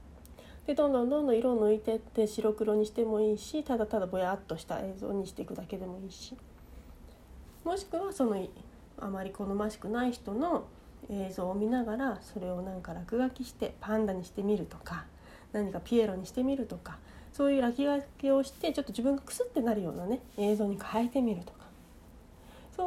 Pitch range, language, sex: 195-265 Hz, Japanese, female